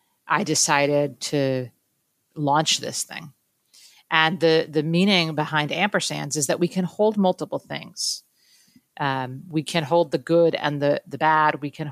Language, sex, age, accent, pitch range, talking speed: English, female, 40-59, American, 140-165 Hz, 155 wpm